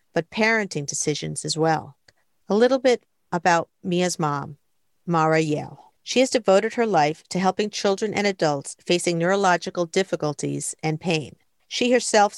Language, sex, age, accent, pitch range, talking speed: English, female, 50-69, American, 160-195 Hz, 145 wpm